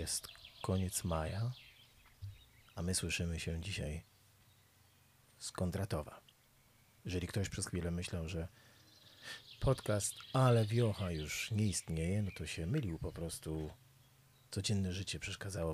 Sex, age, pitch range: male, 40-59, 95-120 Hz